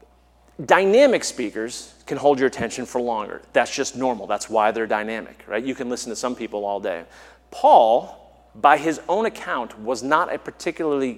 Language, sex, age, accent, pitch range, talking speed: English, male, 40-59, American, 115-145 Hz, 175 wpm